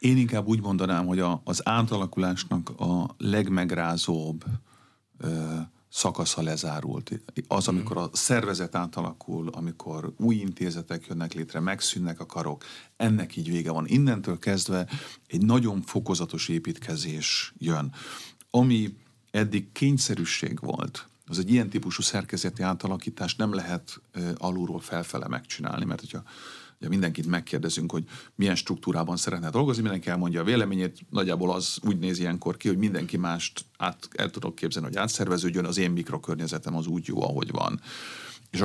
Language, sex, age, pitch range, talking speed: Hungarian, male, 40-59, 85-105 Hz, 140 wpm